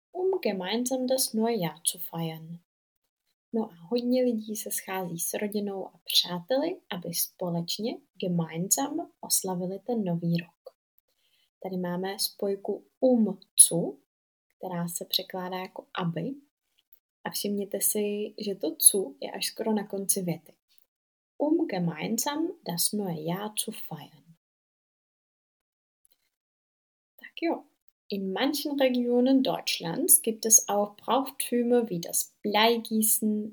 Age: 20-39